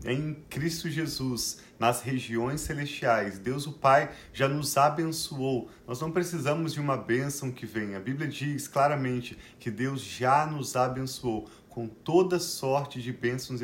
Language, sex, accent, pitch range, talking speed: Portuguese, male, Brazilian, 120-145 Hz, 150 wpm